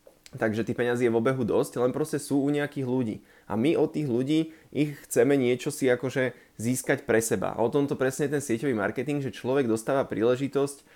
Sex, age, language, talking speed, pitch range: male, 20-39, Slovak, 210 wpm, 110-140 Hz